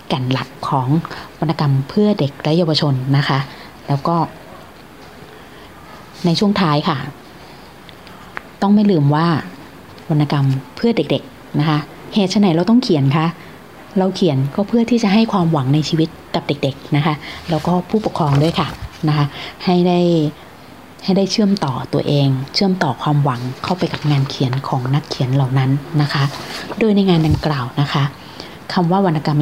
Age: 20-39